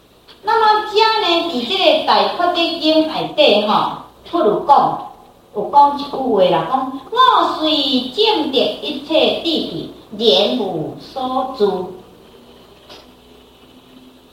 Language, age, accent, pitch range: Chinese, 40-59, American, 250-415 Hz